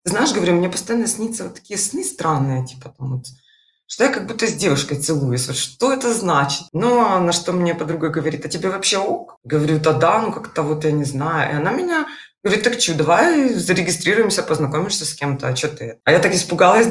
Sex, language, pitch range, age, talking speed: female, Russian, 155-200 Hz, 20-39, 215 wpm